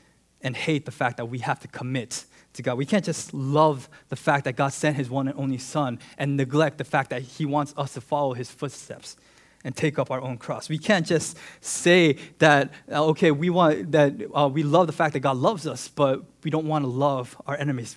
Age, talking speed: 20-39, 230 wpm